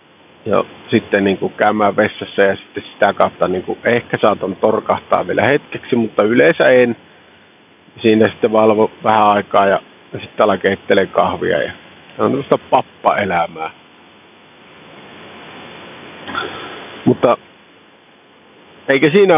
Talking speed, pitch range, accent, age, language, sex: 110 wpm, 110-155 Hz, native, 50-69, Finnish, male